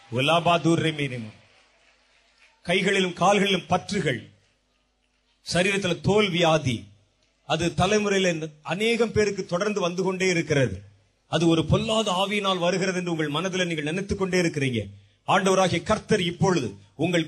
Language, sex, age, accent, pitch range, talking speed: Tamil, male, 30-49, native, 145-205 Hz, 105 wpm